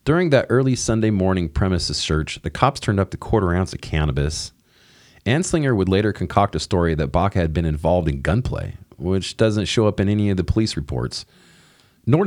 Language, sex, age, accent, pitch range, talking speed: English, male, 30-49, American, 85-115 Hz, 195 wpm